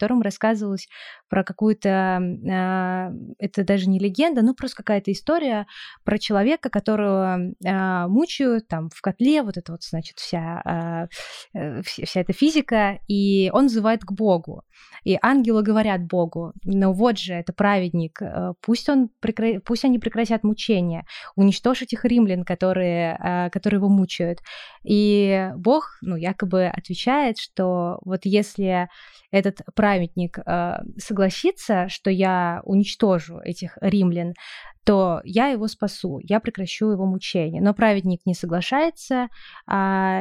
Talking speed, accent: 130 wpm, native